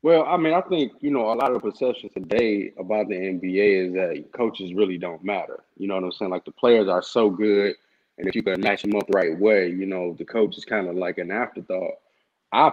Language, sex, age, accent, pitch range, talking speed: English, male, 20-39, American, 100-120 Hz, 255 wpm